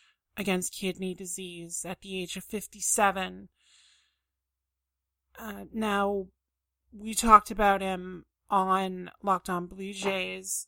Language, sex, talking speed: English, male, 110 wpm